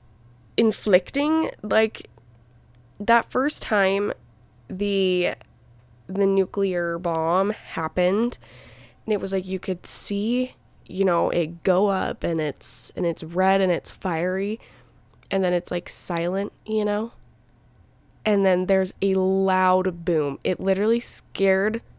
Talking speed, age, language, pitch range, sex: 125 wpm, 20-39, English, 175-220 Hz, female